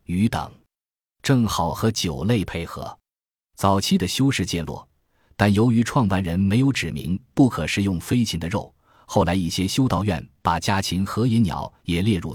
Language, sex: Chinese, male